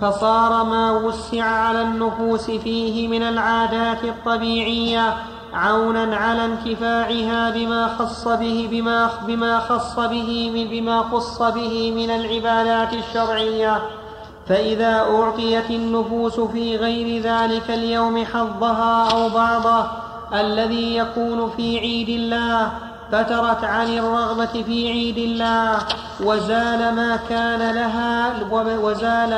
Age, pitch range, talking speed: 30-49, 225-230 Hz, 100 wpm